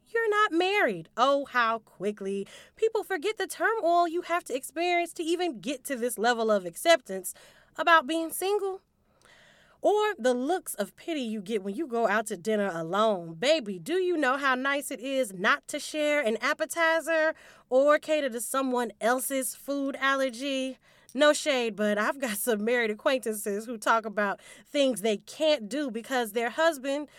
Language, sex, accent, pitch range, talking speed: English, female, American, 225-330 Hz, 170 wpm